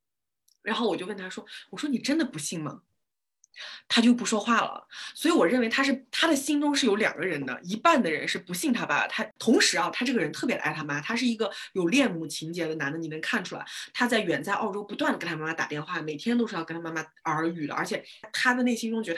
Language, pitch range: Chinese, 165-250 Hz